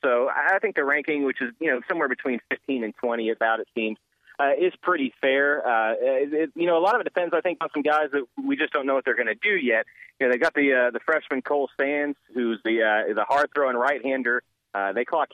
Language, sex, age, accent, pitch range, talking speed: English, male, 30-49, American, 110-145 Hz, 265 wpm